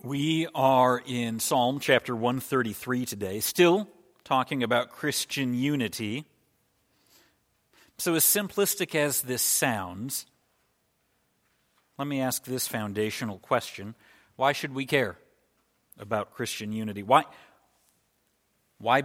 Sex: male